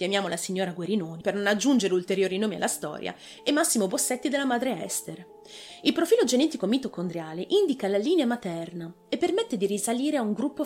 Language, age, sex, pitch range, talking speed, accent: Italian, 30-49, female, 185-285 Hz, 180 wpm, native